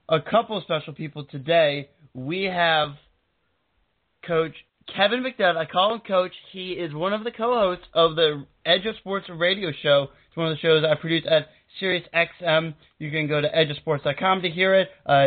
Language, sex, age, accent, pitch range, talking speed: English, male, 20-39, American, 150-180 Hz, 180 wpm